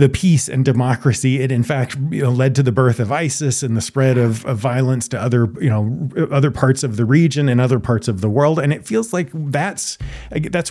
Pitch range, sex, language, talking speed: 120-150 Hz, male, English, 235 wpm